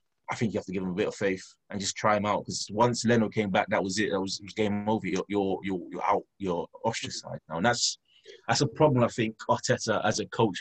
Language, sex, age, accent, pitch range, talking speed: English, male, 20-39, British, 100-115 Hz, 260 wpm